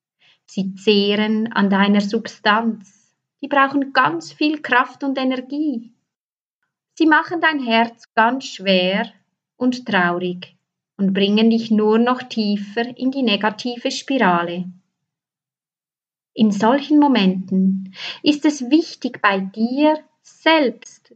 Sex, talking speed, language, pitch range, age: female, 110 wpm, German, 190-270 Hz, 30-49